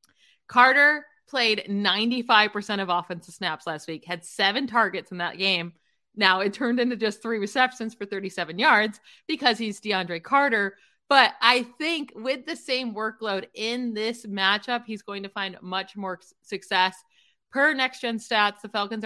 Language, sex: English, female